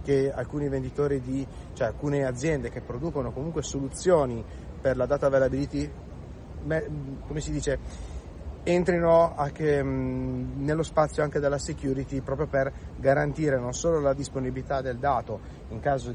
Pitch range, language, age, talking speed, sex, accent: 130-155 Hz, Italian, 30-49, 135 wpm, male, native